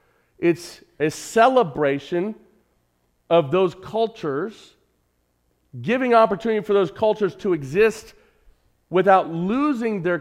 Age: 40-59